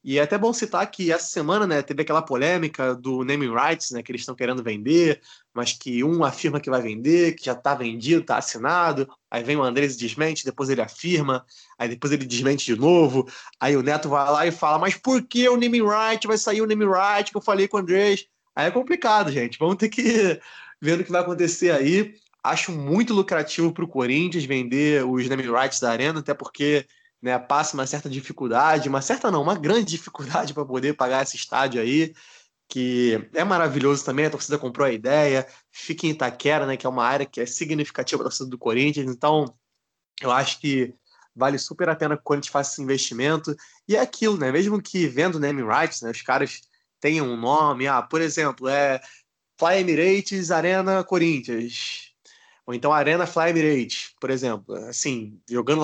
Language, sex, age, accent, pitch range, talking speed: Portuguese, male, 20-39, Brazilian, 130-175 Hz, 205 wpm